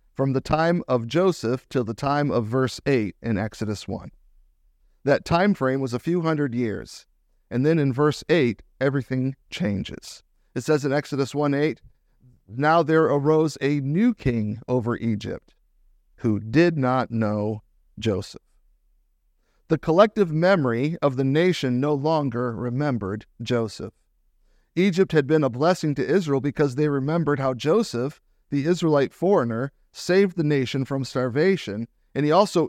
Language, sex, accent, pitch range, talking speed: English, male, American, 120-155 Hz, 150 wpm